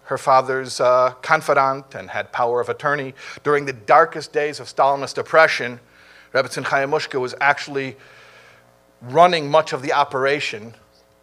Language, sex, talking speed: English, male, 135 wpm